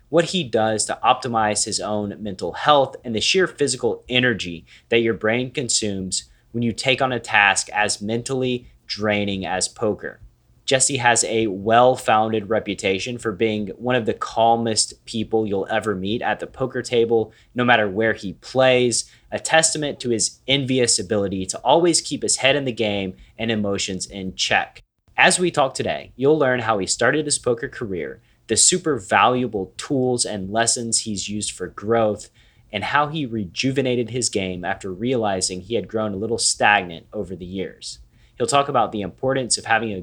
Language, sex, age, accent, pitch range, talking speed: English, male, 30-49, American, 105-125 Hz, 175 wpm